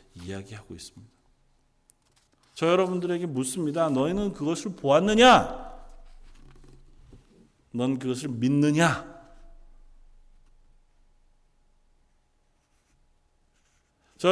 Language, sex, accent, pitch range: Korean, male, native, 115-165 Hz